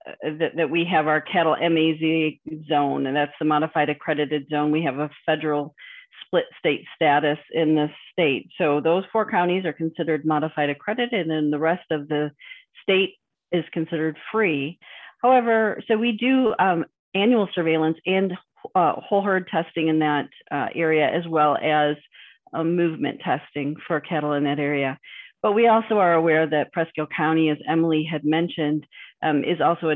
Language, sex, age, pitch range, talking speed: English, female, 40-59, 150-180 Hz, 170 wpm